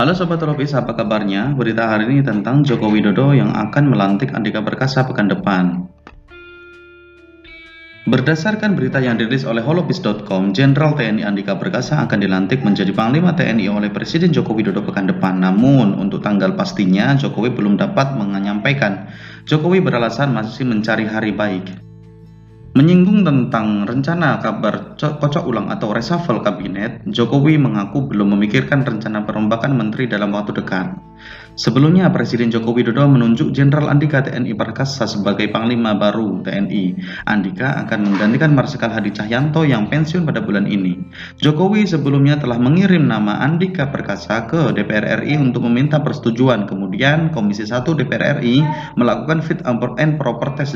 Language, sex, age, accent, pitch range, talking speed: Indonesian, male, 20-39, native, 105-150 Hz, 140 wpm